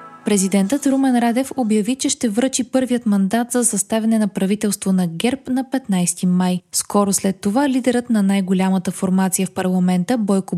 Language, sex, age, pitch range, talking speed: Bulgarian, female, 20-39, 195-245 Hz, 160 wpm